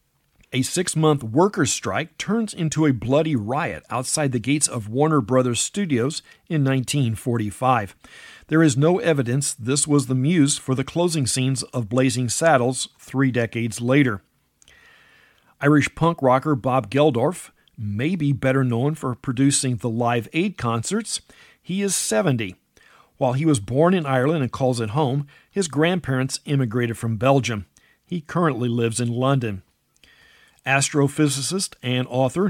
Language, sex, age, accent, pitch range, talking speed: English, male, 50-69, American, 125-150 Hz, 140 wpm